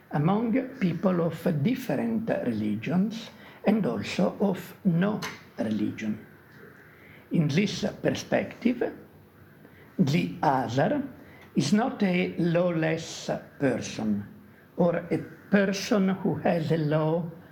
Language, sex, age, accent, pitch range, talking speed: English, male, 60-79, Italian, 145-200 Hz, 95 wpm